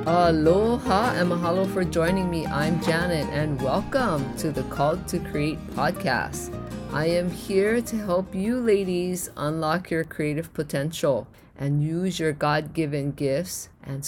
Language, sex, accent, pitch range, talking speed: English, female, American, 140-175 Hz, 140 wpm